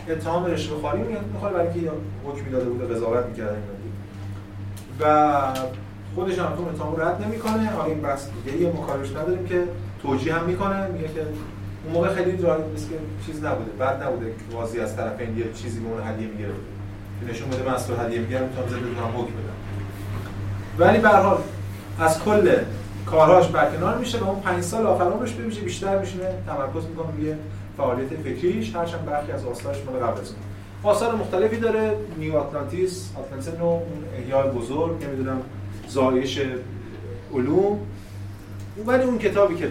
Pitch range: 100-150 Hz